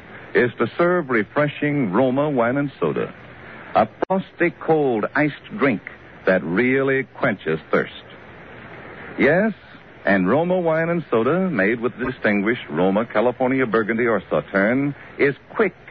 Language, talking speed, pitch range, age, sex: English, 125 wpm, 120-170 Hz, 60-79, male